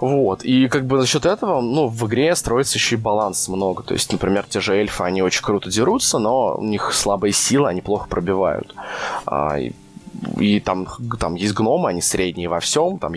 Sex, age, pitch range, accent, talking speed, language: male, 20-39, 95-115 Hz, native, 205 wpm, Russian